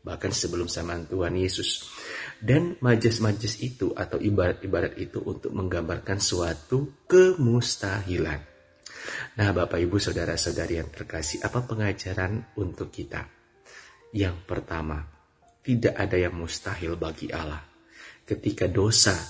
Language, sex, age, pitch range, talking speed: Indonesian, male, 30-49, 90-120 Hz, 115 wpm